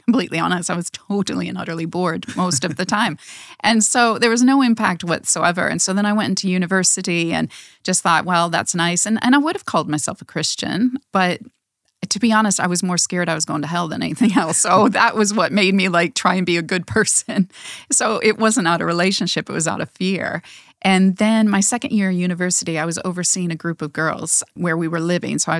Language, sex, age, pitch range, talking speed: English, female, 30-49, 170-215 Hz, 235 wpm